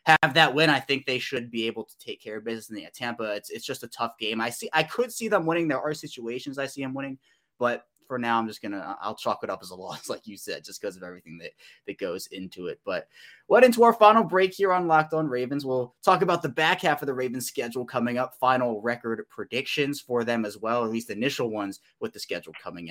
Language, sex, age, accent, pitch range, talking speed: English, male, 20-39, American, 115-145 Hz, 265 wpm